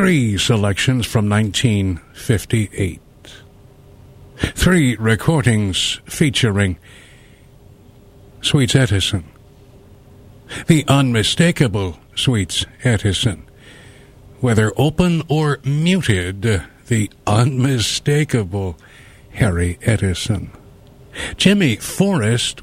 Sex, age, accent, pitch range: male, 60-79, American, 100-130 Hz